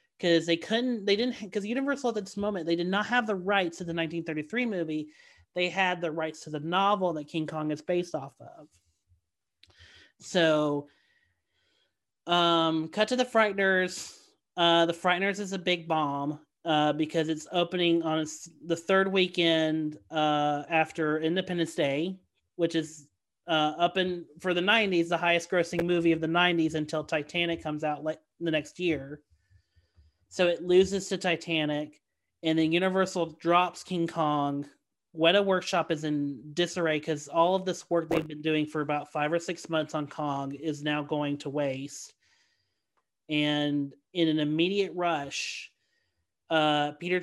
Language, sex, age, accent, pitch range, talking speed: English, male, 30-49, American, 150-180 Hz, 160 wpm